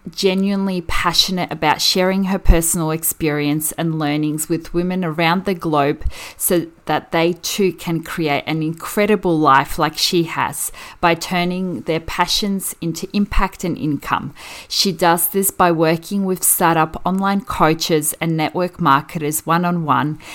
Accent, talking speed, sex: Australian, 140 wpm, female